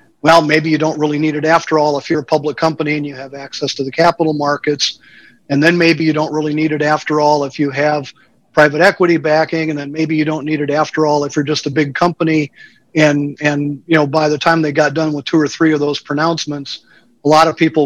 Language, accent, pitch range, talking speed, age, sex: English, American, 145-155 Hz, 250 wpm, 40-59, male